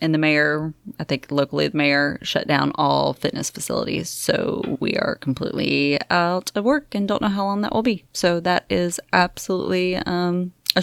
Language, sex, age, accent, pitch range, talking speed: English, female, 20-39, American, 155-200 Hz, 190 wpm